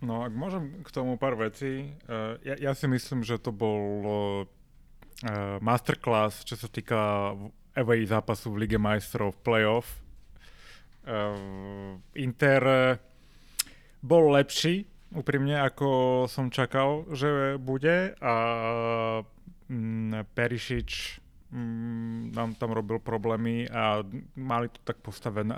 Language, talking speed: Slovak, 105 wpm